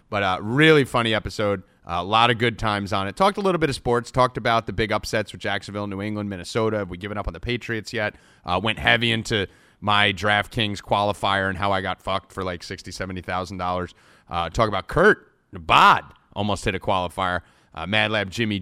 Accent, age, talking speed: American, 30-49, 215 wpm